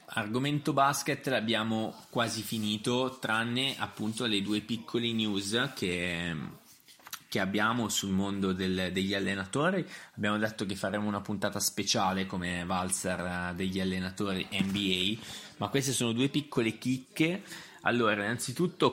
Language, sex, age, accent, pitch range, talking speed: Italian, male, 20-39, native, 95-120 Hz, 120 wpm